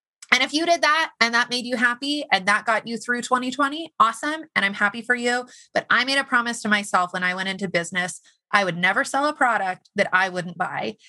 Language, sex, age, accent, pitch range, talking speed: English, female, 30-49, American, 185-260 Hz, 240 wpm